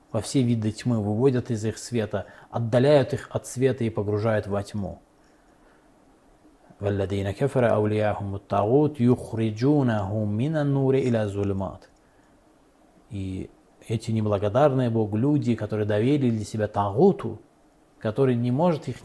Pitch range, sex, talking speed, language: 105-130 Hz, male, 95 wpm, Russian